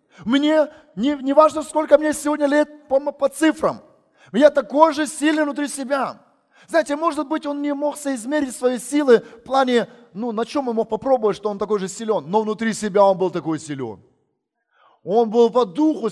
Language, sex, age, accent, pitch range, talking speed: Russian, male, 20-39, native, 230-305 Hz, 180 wpm